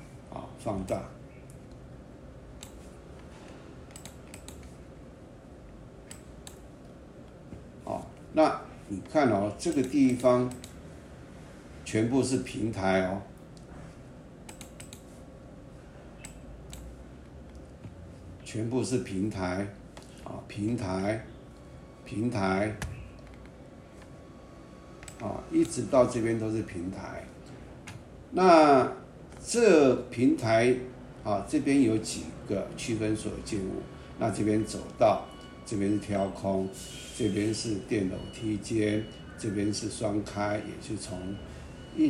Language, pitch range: Chinese, 95-115 Hz